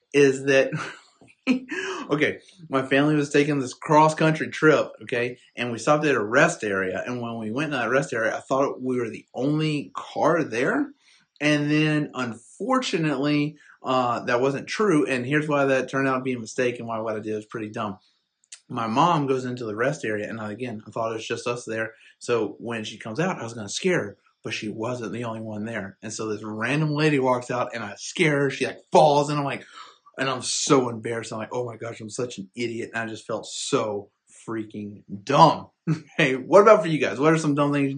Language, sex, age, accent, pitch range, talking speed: English, male, 30-49, American, 115-145 Hz, 225 wpm